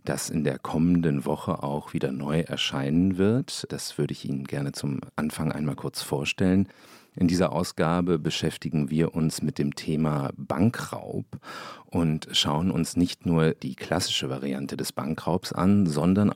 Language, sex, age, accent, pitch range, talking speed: German, male, 40-59, German, 70-85 Hz, 155 wpm